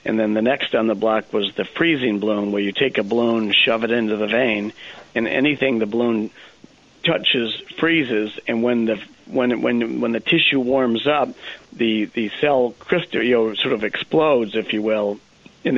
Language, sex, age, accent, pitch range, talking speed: English, male, 50-69, American, 110-125 Hz, 190 wpm